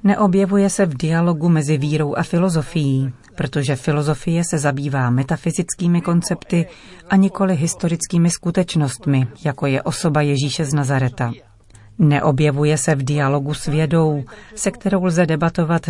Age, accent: 40-59, native